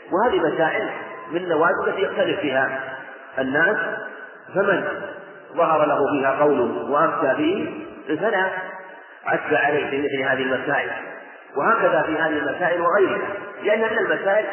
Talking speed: 110 wpm